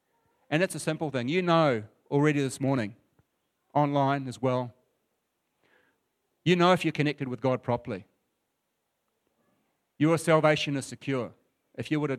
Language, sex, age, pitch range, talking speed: English, male, 40-59, 120-145 Hz, 145 wpm